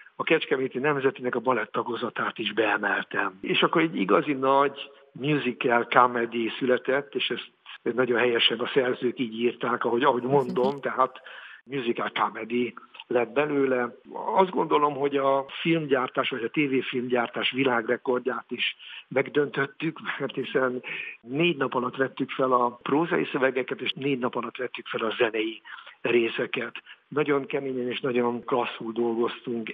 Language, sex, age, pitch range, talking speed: Hungarian, male, 60-79, 120-140 Hz, 135 wpm